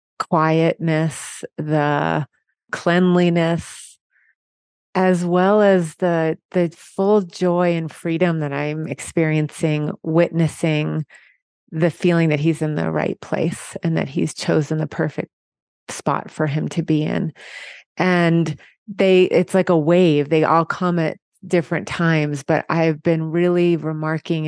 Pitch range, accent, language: 150-170 Hz, American, English